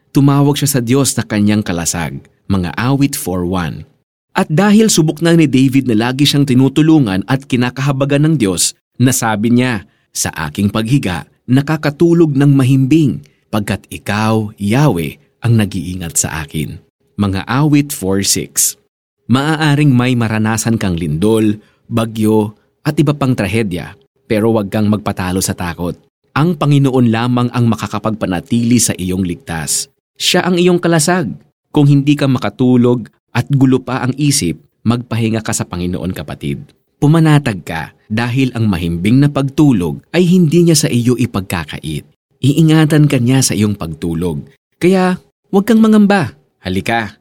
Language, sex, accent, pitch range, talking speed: Filipino, male, native, 100-145 Hz, 135 wpm